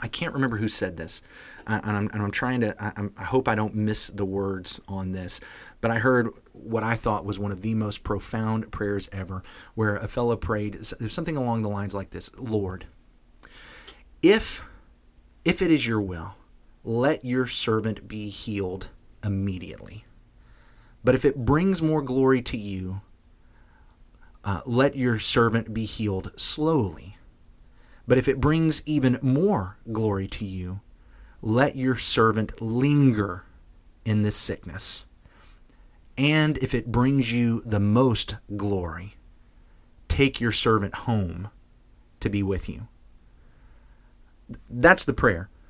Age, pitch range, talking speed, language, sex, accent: 30-49, 100-120 Hz, 145 wpm, English, male, American